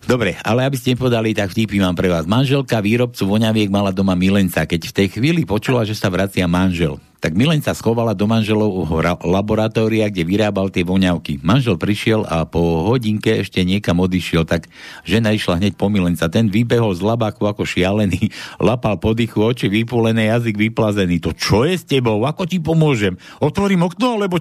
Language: Slovak